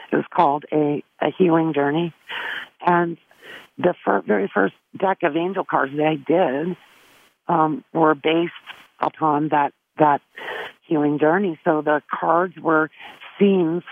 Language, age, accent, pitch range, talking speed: English, 50-69, American, 145-170 Hz, 135 wpm